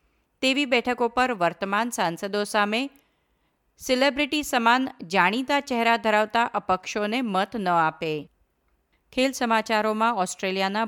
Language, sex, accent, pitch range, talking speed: Gujarati, female, native, 180-235 Hz, 110 wpm